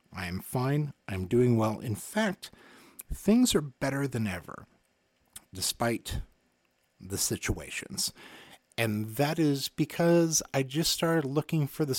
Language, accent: English, American